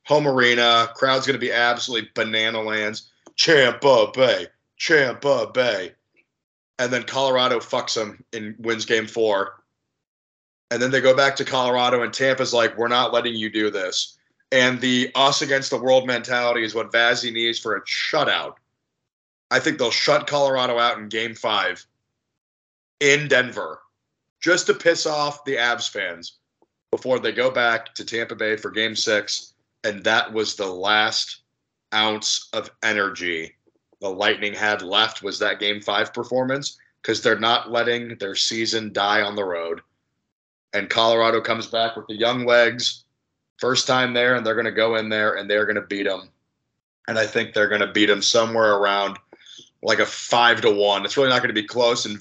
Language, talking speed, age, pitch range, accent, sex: English, 175 wpm, 30-49, 110-125 Hz, American, male